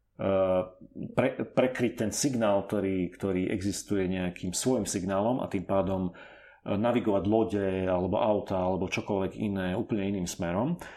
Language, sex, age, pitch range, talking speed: Slovak, male, 40-59, 95-110 Hz, 120 wpm